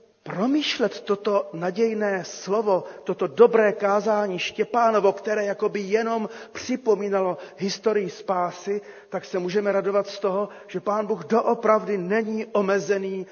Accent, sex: native, male